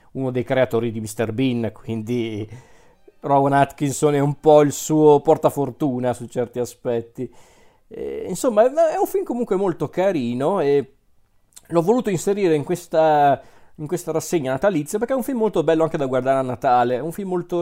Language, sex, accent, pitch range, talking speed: Italian, male, native, 135-170 Hz, 175 wpm